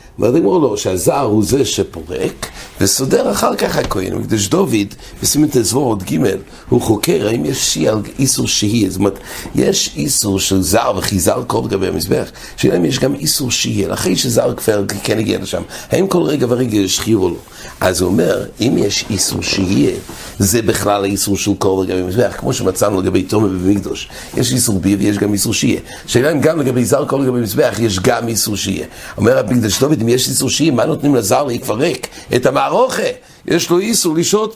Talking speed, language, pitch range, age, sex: 150 wpm, English, 100-130 Hz, 60-79, male